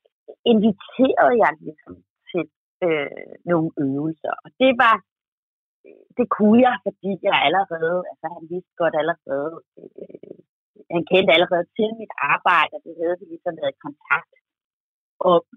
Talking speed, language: 135 wpm, Danish